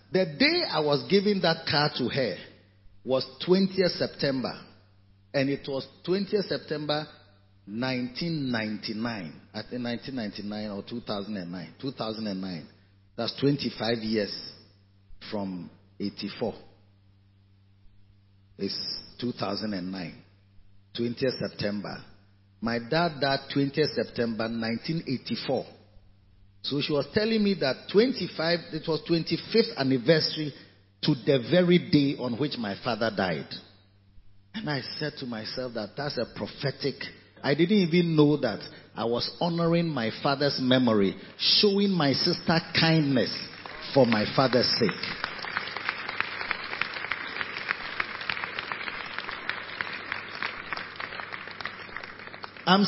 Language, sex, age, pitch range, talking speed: English, male, 40-59, 100-165 Hz, 100 wpm